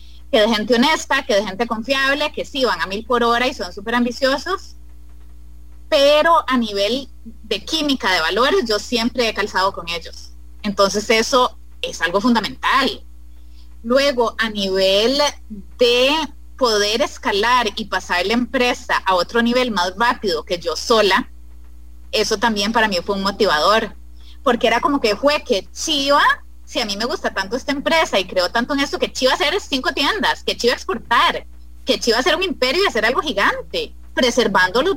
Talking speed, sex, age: 175 wpm, female, 30-49